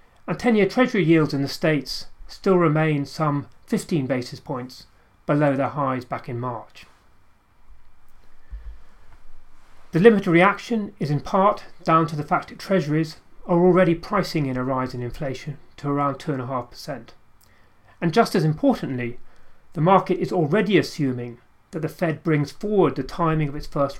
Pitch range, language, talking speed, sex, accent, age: 135-180 Hz, English, 155 wpm, male, British, 30-49